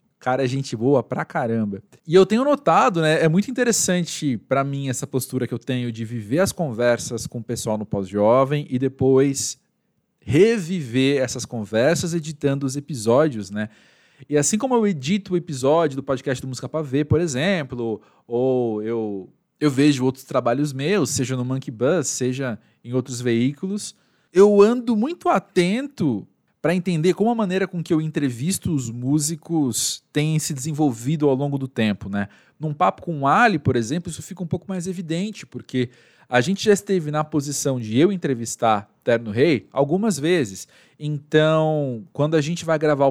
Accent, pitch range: Brazilian, 120-160 Hz